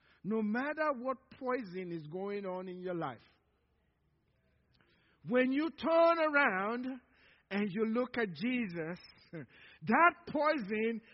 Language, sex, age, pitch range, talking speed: English, male, 50-69, 210-295 Hz, 115 wpm